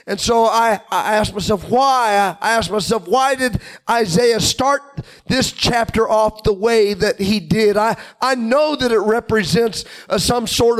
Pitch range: 220-275 Hz